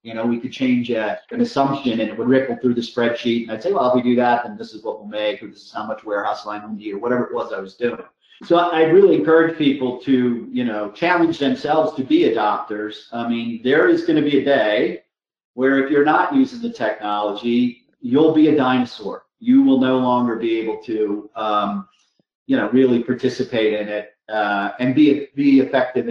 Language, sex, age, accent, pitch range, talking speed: English, male, 40-59, American, 115-145 Hz, 225 wpm